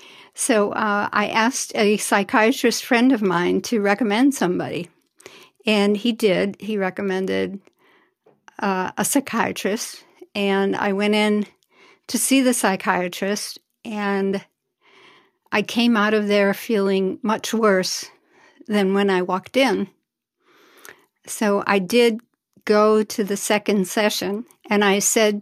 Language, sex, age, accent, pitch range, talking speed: English, female, 60-79, American, 200-235 Hz, 125 wpm